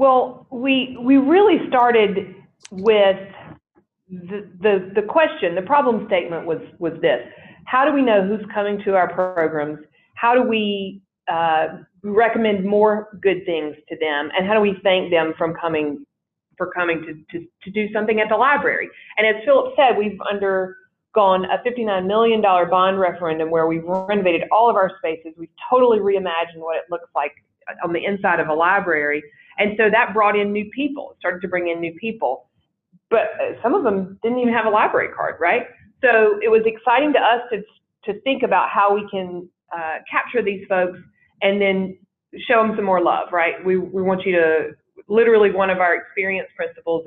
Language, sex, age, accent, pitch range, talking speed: English, female, 40-59, American, 170-215 Hz, 185 wpm